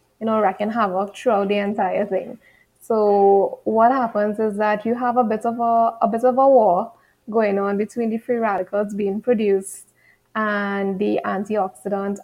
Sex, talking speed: female, 175 wpm